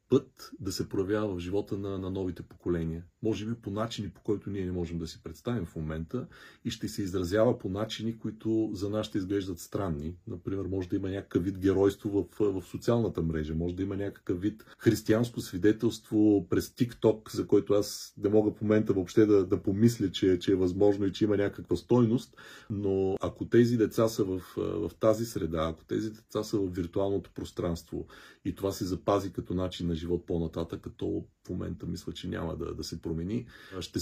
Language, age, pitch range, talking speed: Bulgarian, 40-59, 90-110 Hz, 200 wpm